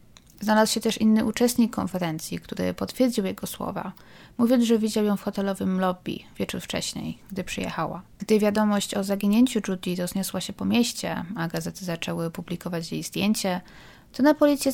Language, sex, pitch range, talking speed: Polish, female, 170-220 Hz, 160 wpm